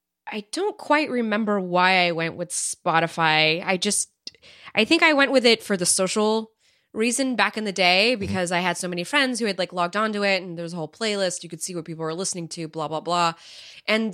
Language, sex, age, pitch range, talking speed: English, female, 20-39, 170-215 Hz, 235 wpm